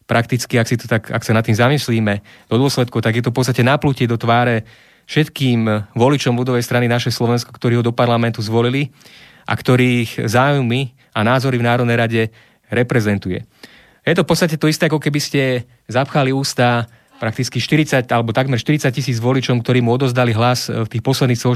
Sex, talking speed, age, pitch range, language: male, 180 wpm, 30-49, 115-130 Hz, Slovak